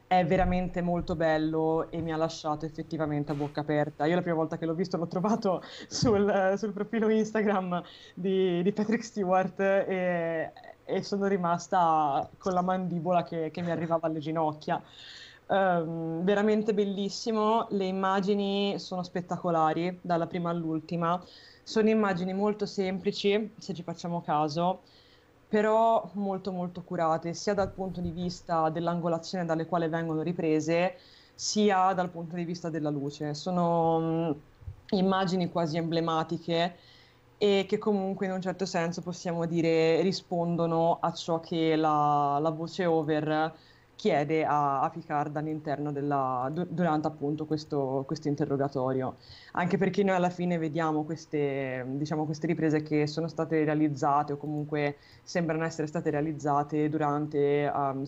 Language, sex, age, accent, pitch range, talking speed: Italian, female, 20-39, native, 155-180 Hz, 135 wpm